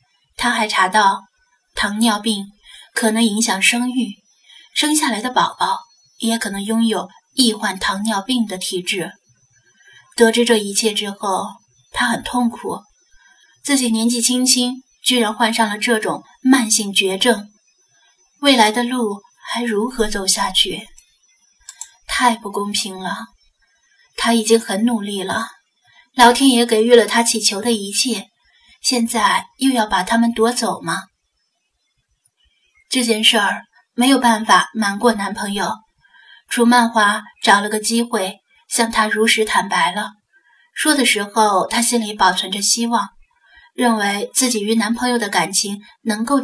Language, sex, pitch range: Chinese, female, 205-245 Hz